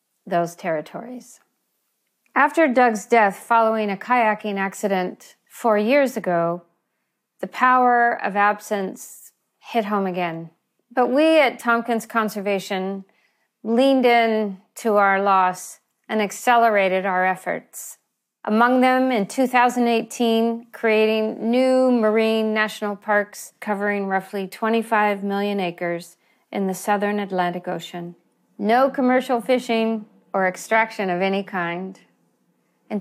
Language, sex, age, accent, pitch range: Korean, female, 40-59, American, 195-235 Hz